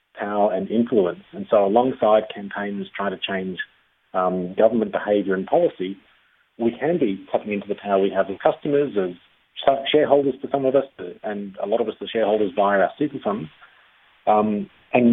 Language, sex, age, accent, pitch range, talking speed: English, male, 30-49, Australian, 100-120 Hz, 175 wpm